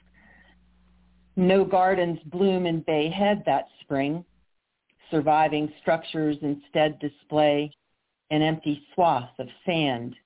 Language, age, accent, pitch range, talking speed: English, 50-69, American, 140-180 Hz, 95 wpm